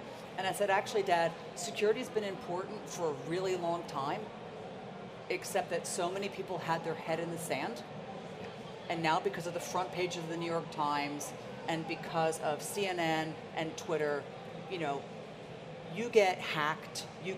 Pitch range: 165-205 Hz